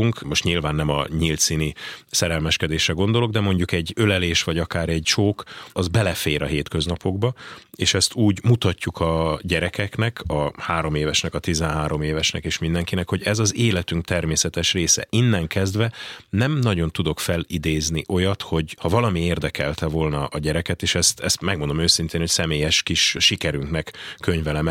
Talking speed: 155 wpm